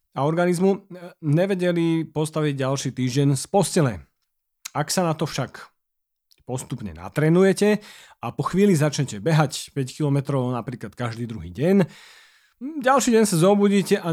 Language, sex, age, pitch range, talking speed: Slovak, male, 40-59, 135-185 Hz, 130 wpm